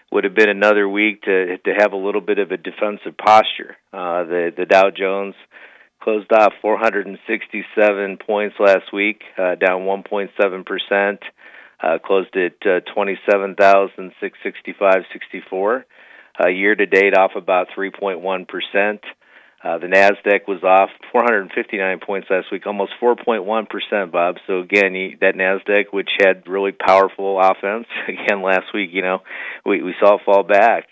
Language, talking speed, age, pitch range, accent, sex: English, 150 wpm, 50-69, 95-100 Hz, American, male